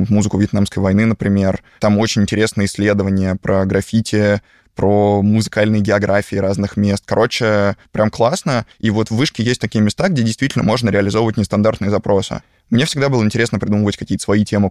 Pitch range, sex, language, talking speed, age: 100-110 Hz, male, Russian, 160 wpm, 20-39